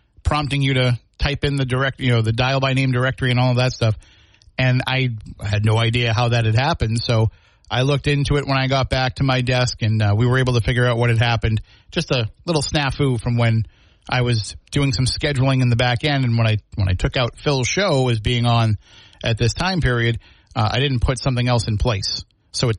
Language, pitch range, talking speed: English, 110-130 Hz, 240 wpm